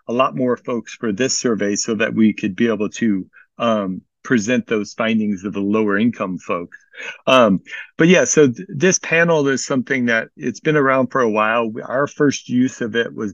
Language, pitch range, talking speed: English, 105-135 Hz, 205 wpm